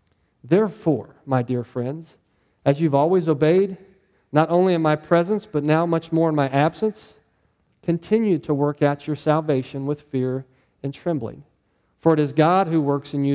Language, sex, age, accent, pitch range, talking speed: English, male, 40-59, American, 135-165 Hz, 170 wpm